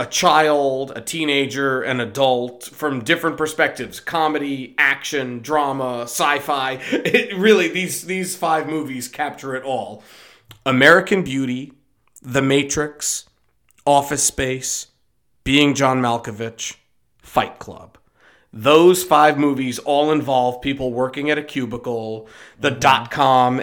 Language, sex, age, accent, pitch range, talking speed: English, male, 40-59, American, 125-150 Hz, 115 wpm